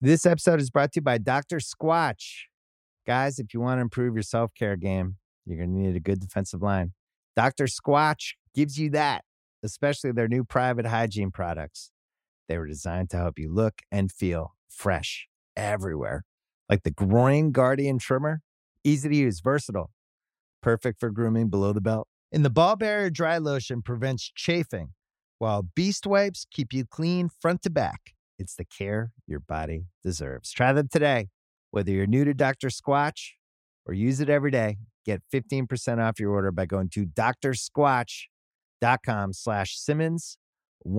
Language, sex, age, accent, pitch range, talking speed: English, male, 30-49, American, 95-145 Hz, 160 wpm